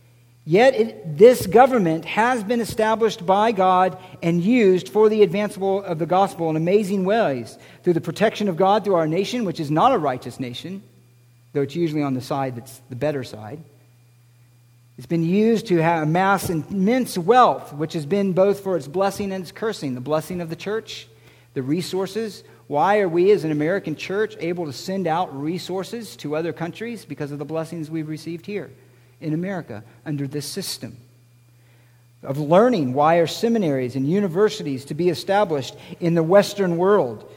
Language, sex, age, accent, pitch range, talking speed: English, male, 50-69, American, 140-200 Hz, 175 wpm